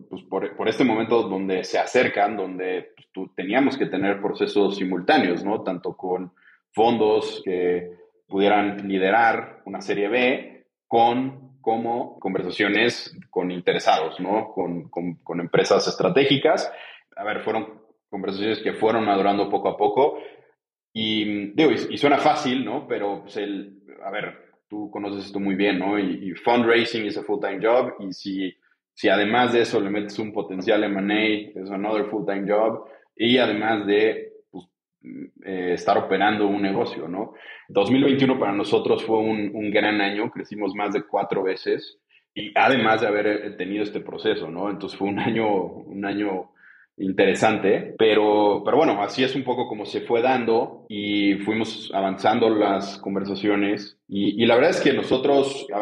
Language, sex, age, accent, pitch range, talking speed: Spanish, male, 30-49, Mexican, 100-115 Hz, 160 wpm